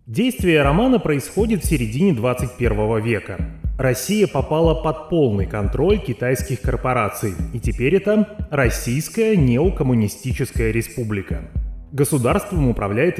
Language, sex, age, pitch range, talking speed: Russian, male, 30-49, 105-175 Hz, 100 wpm